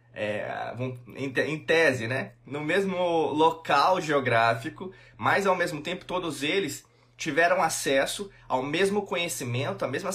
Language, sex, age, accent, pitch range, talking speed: Portuguese, male, 20-39, Brazilian, 125-180 Hz, 120 wpm